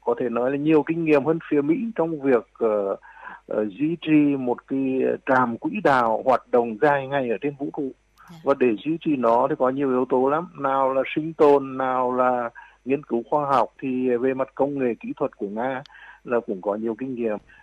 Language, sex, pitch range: Vietnamese, male, 115-150 Hz